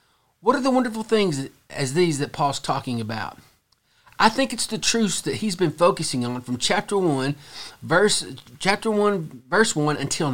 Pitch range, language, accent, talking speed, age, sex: 125-190 Hz, English, American, 175 wpm, 40-59, male